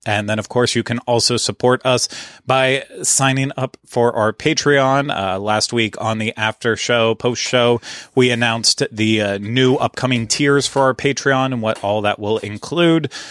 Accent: American